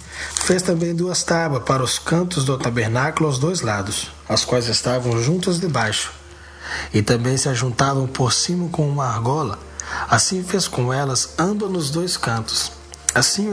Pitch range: 110-155 Hz